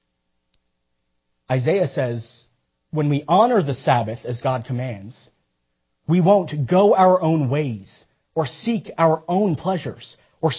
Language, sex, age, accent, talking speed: English, male, 40-59, American, 125 wpm